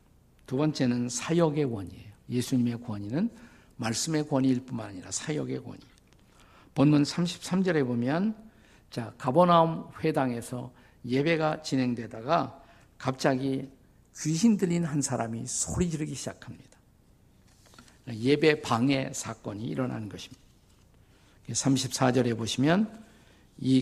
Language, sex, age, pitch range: Korean, male, 50-69, 115-145 Hz